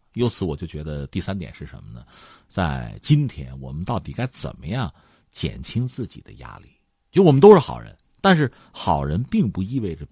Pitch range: 80-125 Hz